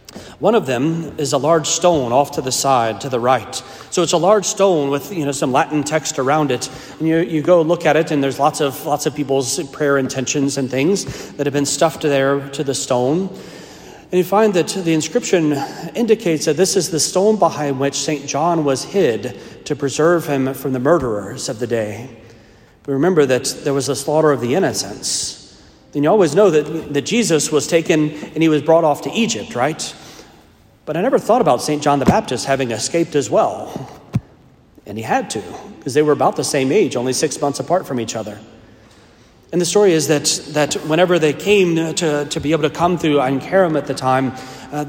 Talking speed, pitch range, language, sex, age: 215 wpm, 135-165 Hz, English, male, 40-59